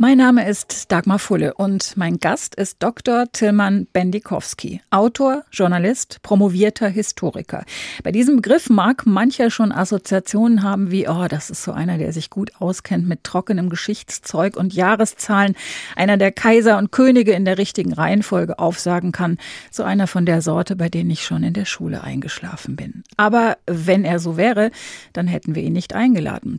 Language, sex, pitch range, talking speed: German, female, 190-235 Hz, 170 wpm